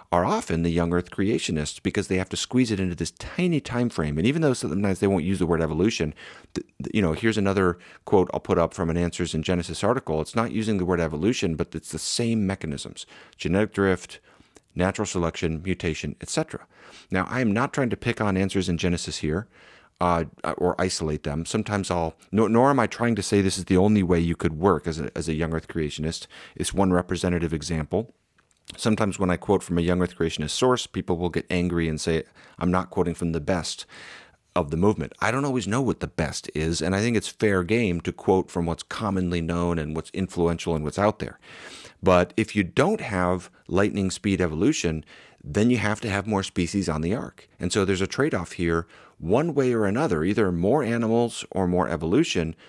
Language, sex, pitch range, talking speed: English, male, 85-105 Hz, 220 wpm